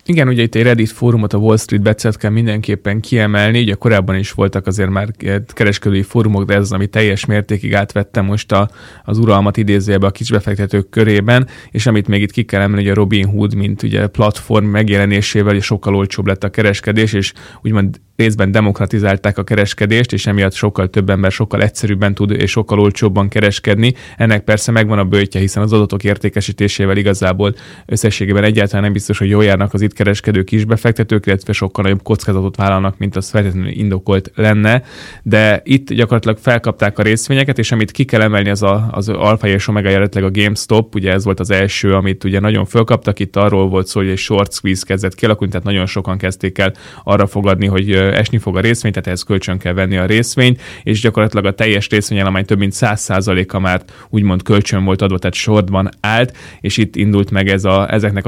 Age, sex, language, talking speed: 20-39, male, Hungarian, 195 wpm